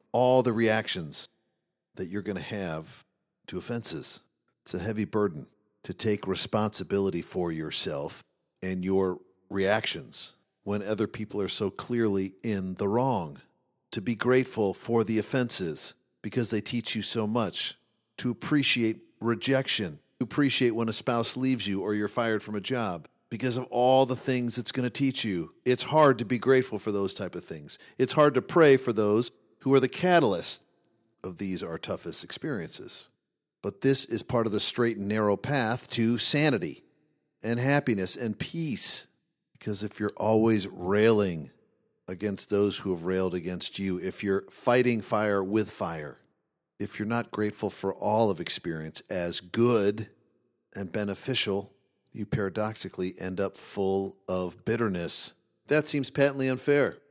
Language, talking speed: English, 160 wpm